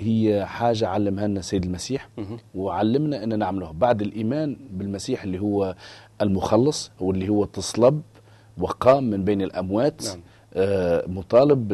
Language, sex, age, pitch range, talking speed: Arabic, male, 40-59, 100-120 Hz, 120 wpm